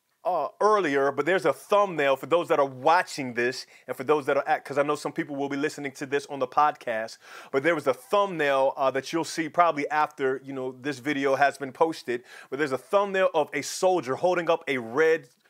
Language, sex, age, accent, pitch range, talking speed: English, male, 30-49, American, 145-185 Hz, 230 wpm